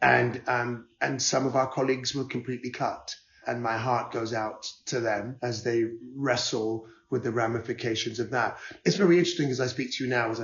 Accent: British